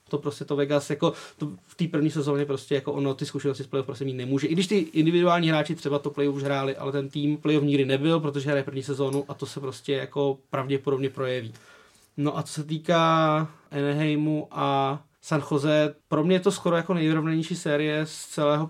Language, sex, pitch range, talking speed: Czech, male, 145-170 Hz, 210 wpm